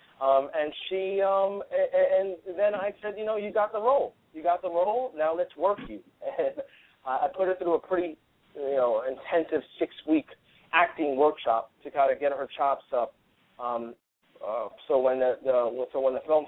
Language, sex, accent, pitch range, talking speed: English, male, American, 130-190 Hz, 195 wpm